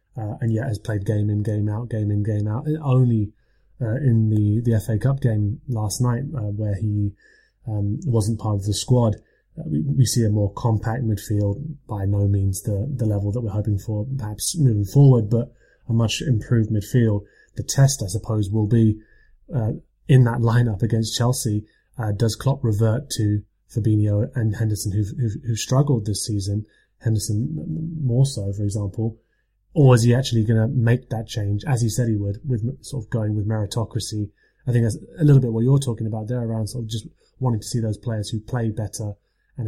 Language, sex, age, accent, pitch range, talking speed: English, male, 20-39, British, 105-120 Hz, 200 wpm